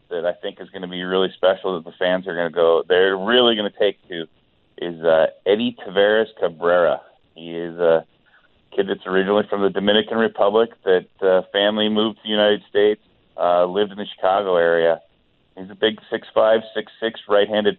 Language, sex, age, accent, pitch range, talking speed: English, male, 30-49, American, 85-105 Hz, 190 wpm